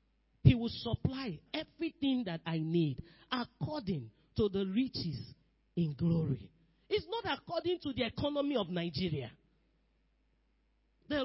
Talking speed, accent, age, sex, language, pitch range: 115 wpm, Nigerian, 40-59, male, English, 205-315 Hz